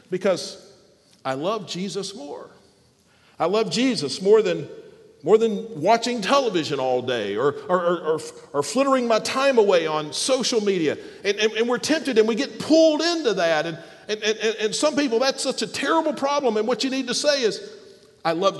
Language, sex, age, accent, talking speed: English, male, 50-69, American, 190 wpm